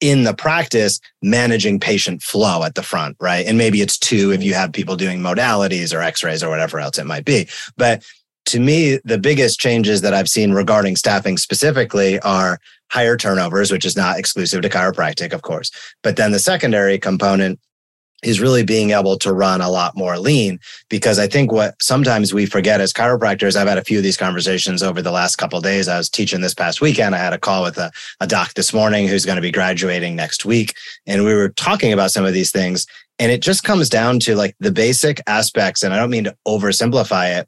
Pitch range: 95-115 Hz